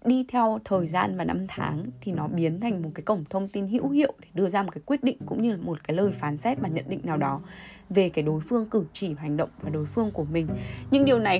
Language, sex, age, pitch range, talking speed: Vietnamese, female, 10-29, 160-220 Hz, 285 wpm